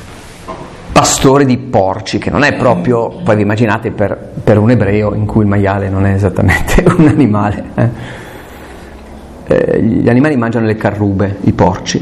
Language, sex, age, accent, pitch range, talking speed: Italian, male, 40-59, native, 100-125 Hz, 160 wpm